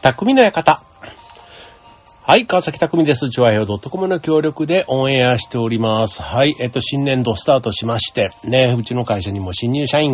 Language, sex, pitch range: Japanese, male, 100-135 Hz